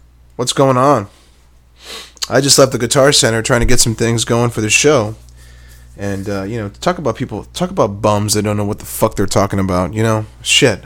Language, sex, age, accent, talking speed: English, male, 20-39, American, 220 wpm